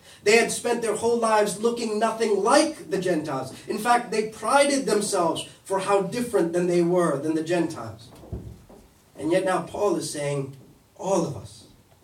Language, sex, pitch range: English, male, 135-180 Hz